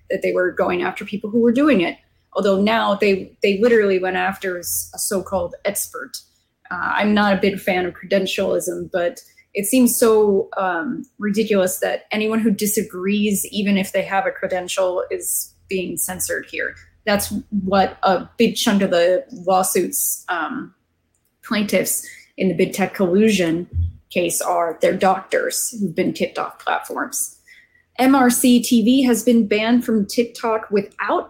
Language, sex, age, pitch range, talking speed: English, female, 20-39, 190-240 Hz, 150 wpm